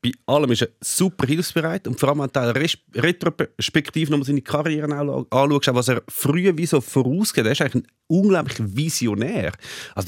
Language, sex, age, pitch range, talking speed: German, male, 30-49, 115-150 Hz, 150 wpm